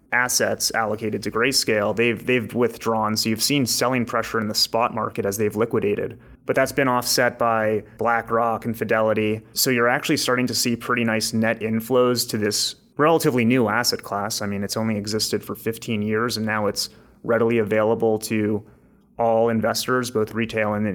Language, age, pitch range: English, 30-49, 110-120 Hz